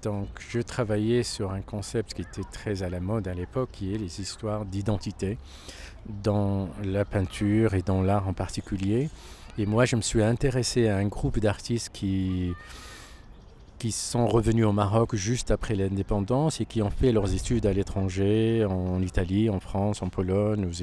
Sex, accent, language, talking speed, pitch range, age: male, French, French, 175 wpm, 95-115 Hz, 50-69